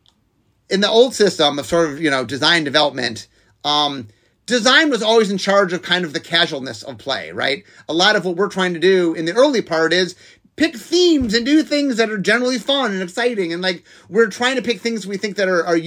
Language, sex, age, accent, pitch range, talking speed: English, male, 30-49, American, 155-220 Hz, 230 wpm